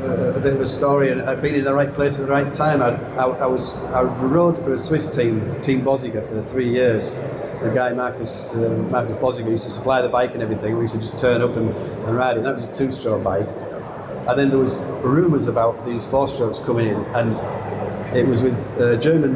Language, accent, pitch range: English, British, 115-140 Hz